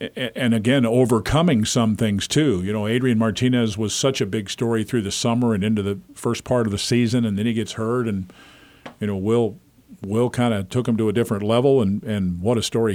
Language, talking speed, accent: English, 225 wpm, American